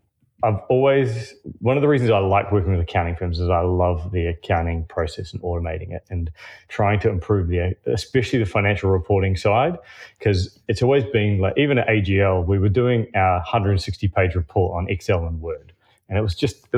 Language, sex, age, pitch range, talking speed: English, male, 30-49, 90-110 Hz, 195 wpm